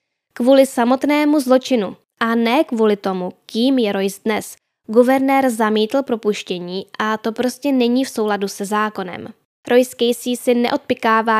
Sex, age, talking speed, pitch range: female, 10-29, 135 wpm, 205-245 Hz